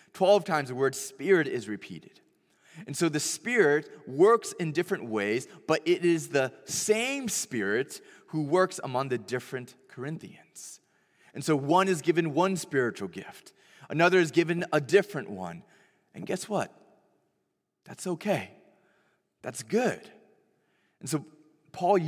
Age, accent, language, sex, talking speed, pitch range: 20-39, American, English, male, 140 wpm, 135-190 Hz